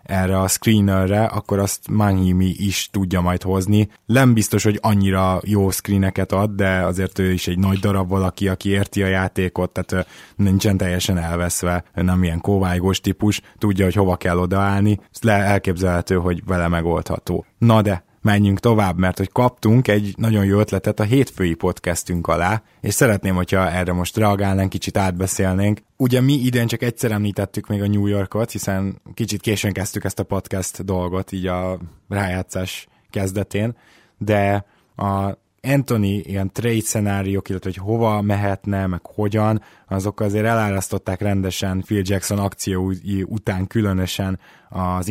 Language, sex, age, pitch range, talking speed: Hungarian, male, 20-39, 95-105 Hz, 150 wpm